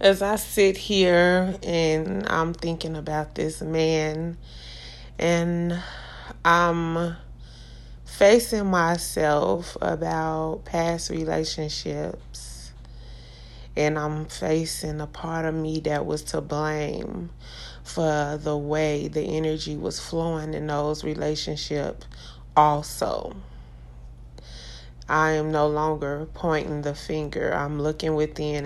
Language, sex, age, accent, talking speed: English, female, 20-39, American, 105 wpm